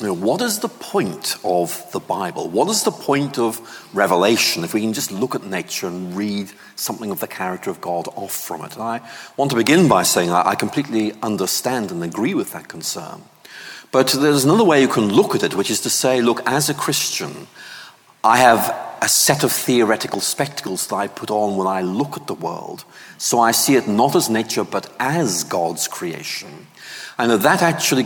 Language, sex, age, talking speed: English, male, 40-59, 200 wpm